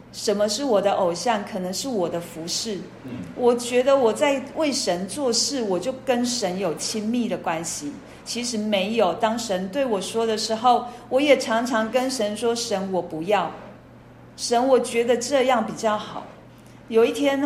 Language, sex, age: Chinese, female, 40-59